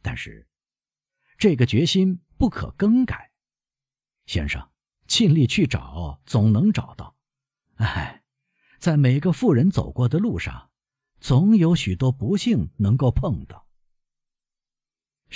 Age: 50-69